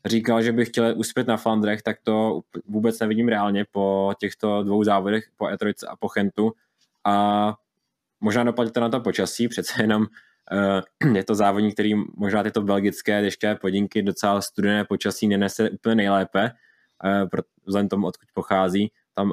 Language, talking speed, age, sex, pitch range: Czech, 160 wpm, 20-39, male, 100-110 Hz